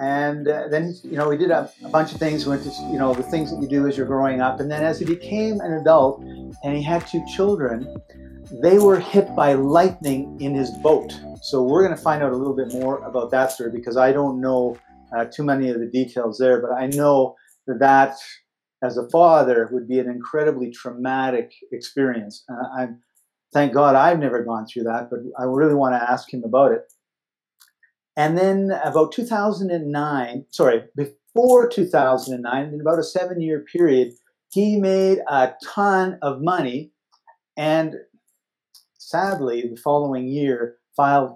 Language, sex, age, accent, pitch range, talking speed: English, male, 50-69, American, 130-160 Hz, 180 wpm